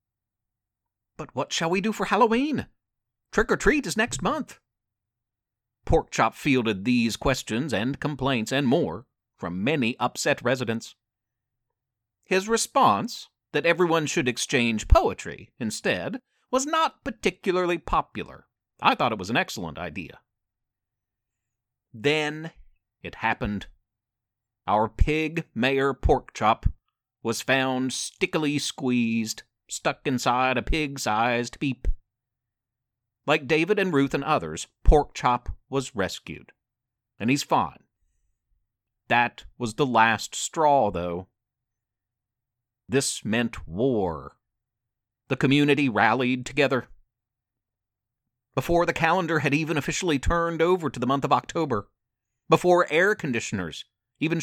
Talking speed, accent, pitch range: 110 wpm, American, 110-145 Hz